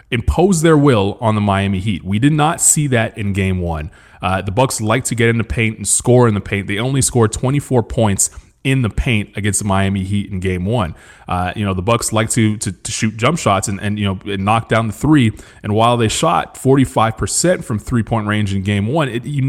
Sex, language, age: male, English, 20-39